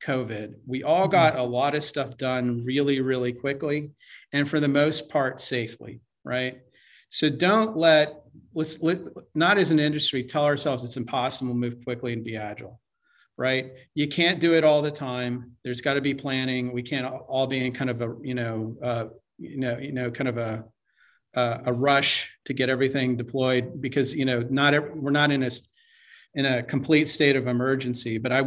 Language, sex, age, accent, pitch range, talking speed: English, male, 40-59, American, 125-150 Hz, 190 wpm